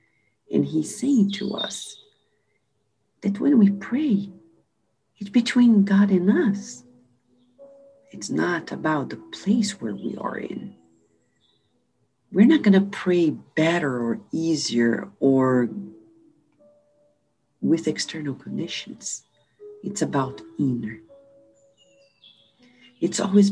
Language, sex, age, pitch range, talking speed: English, female, 50-69, 130-210 Hz, 100 wpm